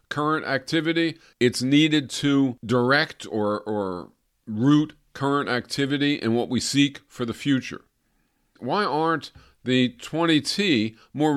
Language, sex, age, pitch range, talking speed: English, male, 50-69, 130-170 Hz, 125 wpm